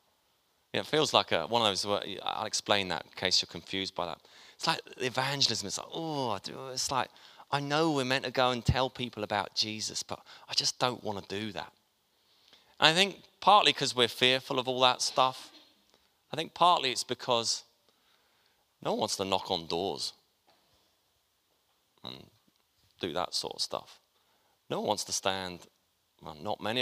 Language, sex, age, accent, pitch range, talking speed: English, male, 30-49, British, 100-130 Hz, 180 wpm